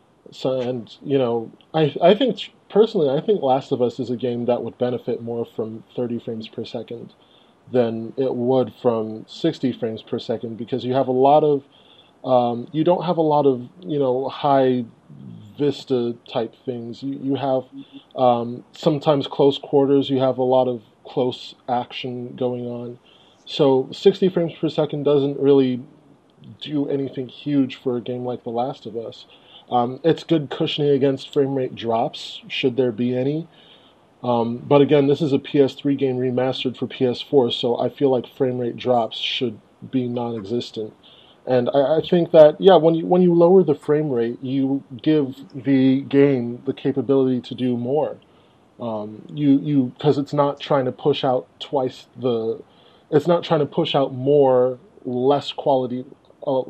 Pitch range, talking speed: 125-145 Hz, 175 wpm